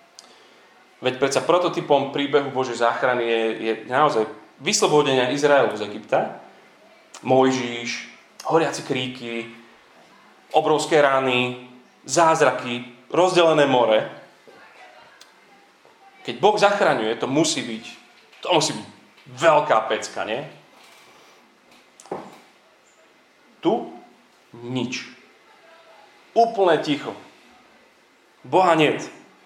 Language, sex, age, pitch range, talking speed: Slovak, male, 30-49, 125-175 Hz, 75 wpm